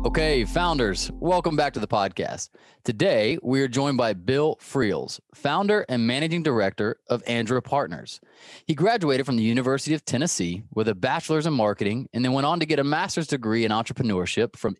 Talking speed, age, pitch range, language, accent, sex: 185 wpm, 20-39, 115-150 Hz, English, American, male